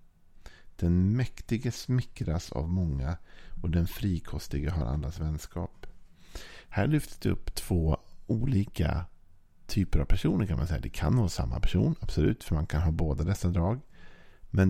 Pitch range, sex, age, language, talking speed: 75-95 Hz, male, 50-69, Swedish, 145 wpm